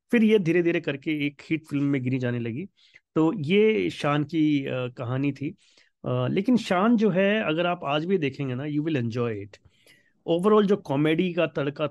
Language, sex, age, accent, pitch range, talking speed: Hindi, male, 30-49, native, 130-175 Hz, 185 wpm